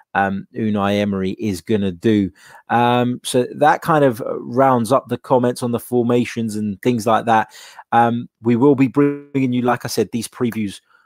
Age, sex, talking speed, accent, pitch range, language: 20-39, male, 180 wpm, British, 100-125 Hz, English